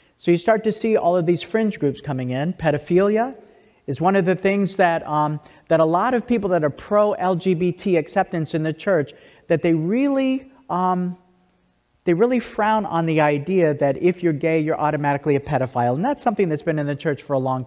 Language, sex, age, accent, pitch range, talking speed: English, male, 40-59, American, 145-185 Hz, 205 wpm